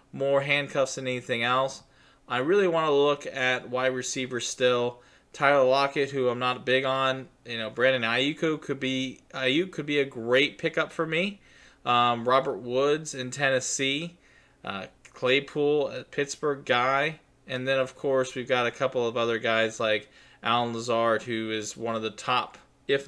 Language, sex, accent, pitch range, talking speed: English, male, American, 120-145 Hz, 170 wpm